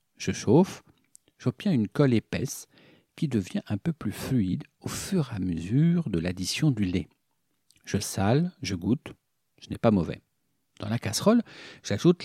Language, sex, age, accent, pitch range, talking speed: French, male, 50-69, French, 100-140 Hz, 160 wpm